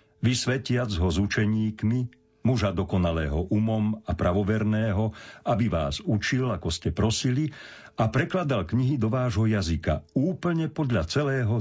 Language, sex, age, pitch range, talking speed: Slovak, male, 50-69, 90-120 Hz, 125 wpm